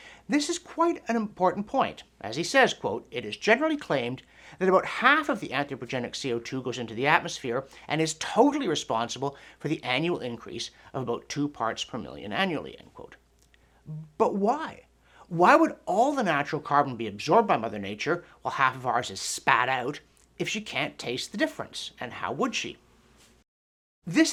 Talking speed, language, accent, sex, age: 180 wpm, English, American, male, 60-79